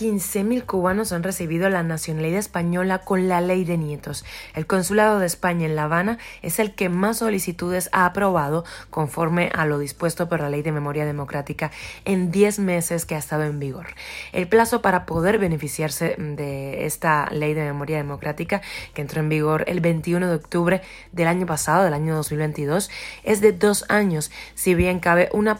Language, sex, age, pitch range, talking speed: Spanish, female, 20-39, 155-190 Hz, 180 wpm